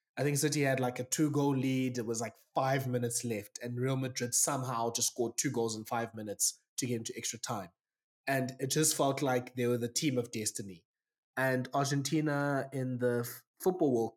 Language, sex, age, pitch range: English, male, 20-39, 120-150 Hz